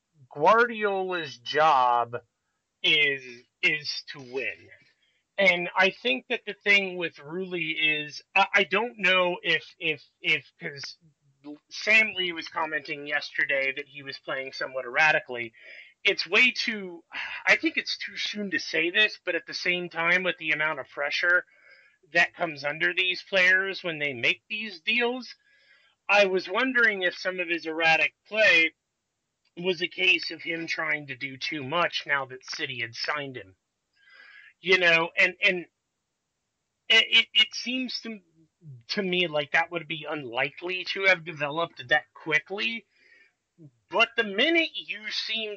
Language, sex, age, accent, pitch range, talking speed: English, male, 30-49, American, 145-195 Hz, 150 wpm